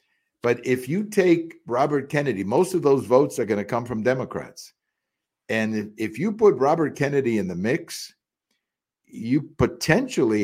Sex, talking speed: male, 155 wpm